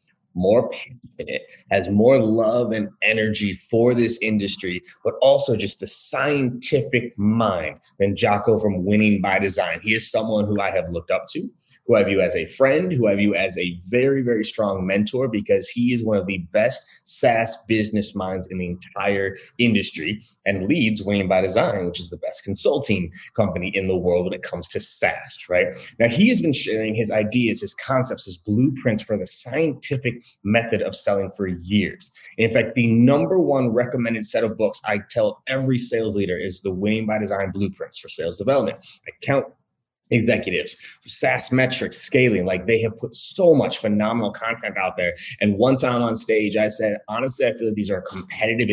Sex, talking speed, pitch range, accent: male, 190 wpm, 100-125 Hz, American